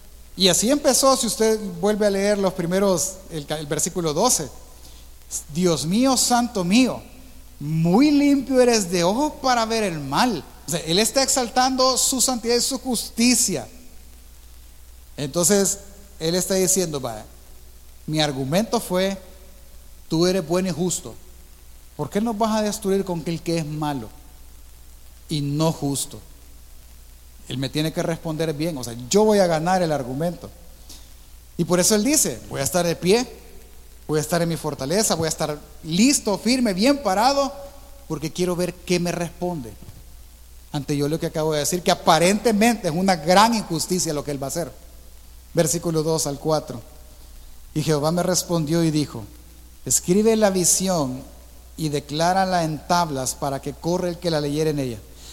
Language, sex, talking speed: Spanish, male, 165 wpm